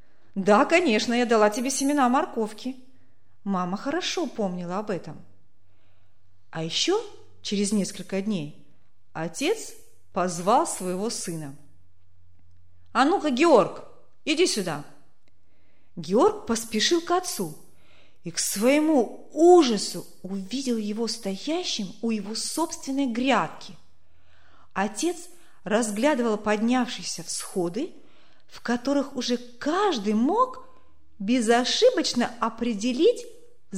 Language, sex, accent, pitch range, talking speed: Russian, female, native, 180-285 Hz, 95 wpm